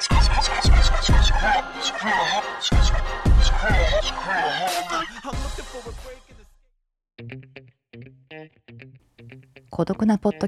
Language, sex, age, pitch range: Japanese, female, 40-59, 125-175 Hz